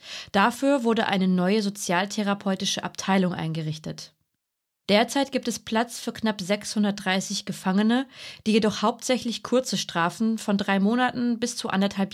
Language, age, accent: German, 30-49, German